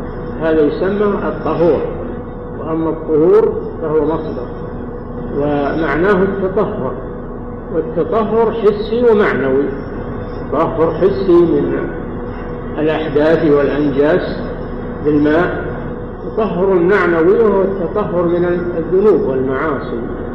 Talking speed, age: 75 wpm, 50-69